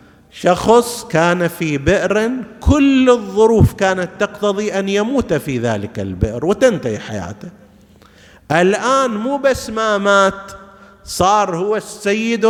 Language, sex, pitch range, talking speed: Arabic, male, 150-220 Hz, 110 wpm